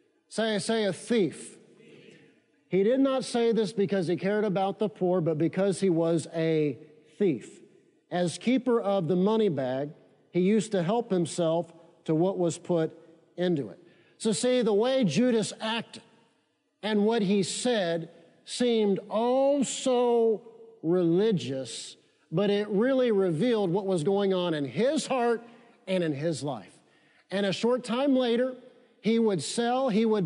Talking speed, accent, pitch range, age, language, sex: 155 wpm, American, 170-225 Hz, 50-69, English, male